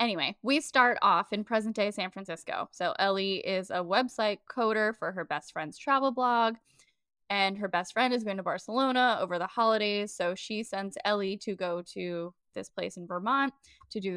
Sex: female